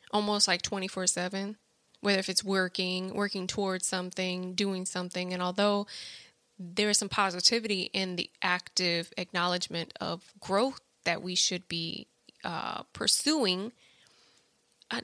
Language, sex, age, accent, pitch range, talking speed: English, female, 20-39, American, 185-230 Hz, 125 wpm